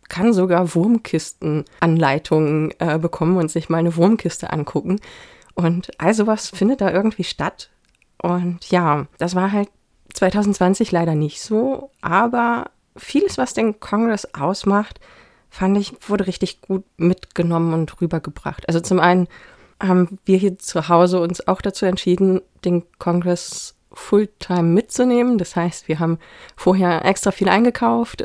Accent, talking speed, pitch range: German, 140 wpm, 170-205 Hz